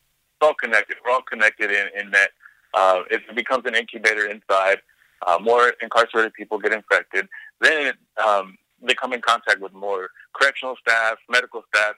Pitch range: 105-125 Hz